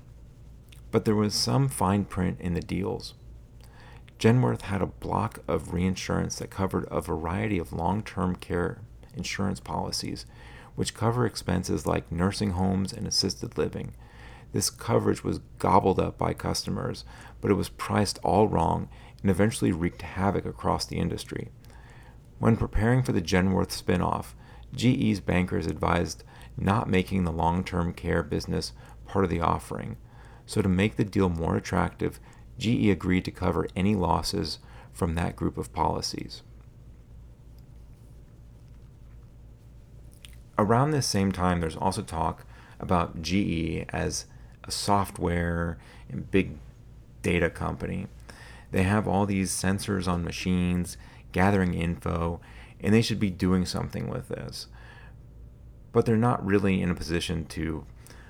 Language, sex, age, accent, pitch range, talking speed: English, male, 40-59, American, 85-105 Hz, 135 wpm